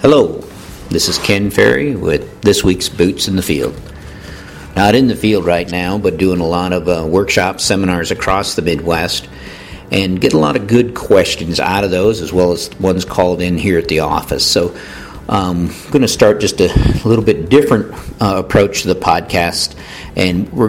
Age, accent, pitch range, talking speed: 50-69, American, 90-100 Hz, 195 wpm